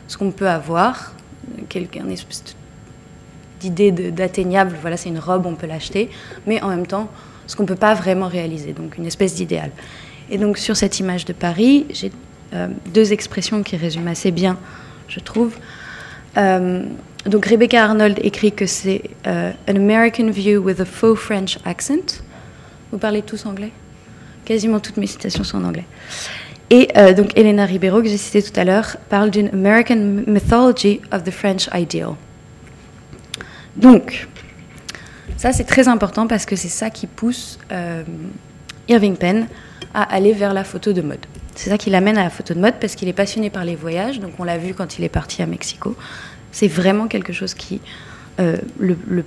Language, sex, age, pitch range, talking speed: French, female, 20-39, 180-215 Hz, 185 wpm